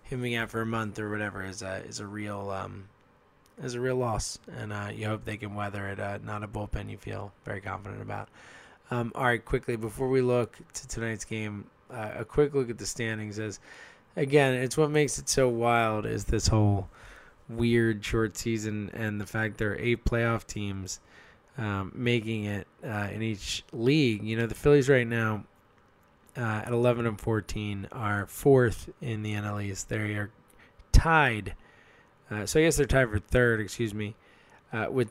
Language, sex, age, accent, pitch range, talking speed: English, male, 20-39, American, 105-120 Hz, 190 wpm